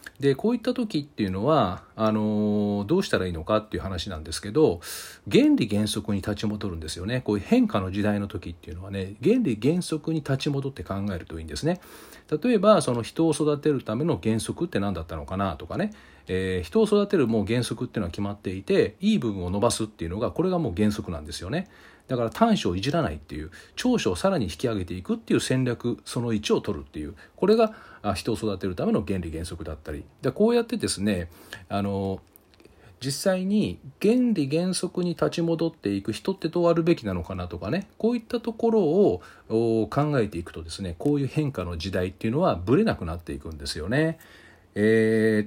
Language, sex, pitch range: Japanese, male, 95-160 Hz